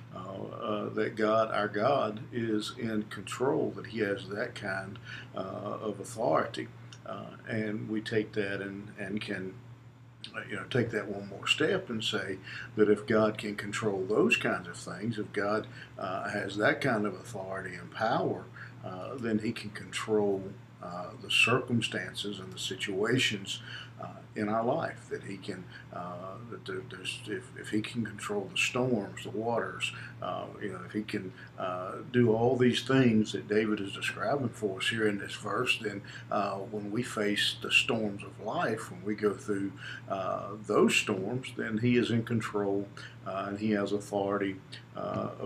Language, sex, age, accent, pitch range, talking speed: English, male, 50-69, American, 100-115 Hz, 175 wpm